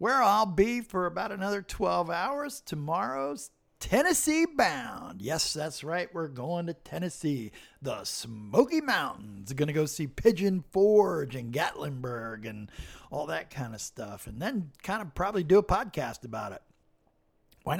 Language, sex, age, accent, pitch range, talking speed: English, male, 50-69, American, 135-185 Hz, 155 wpm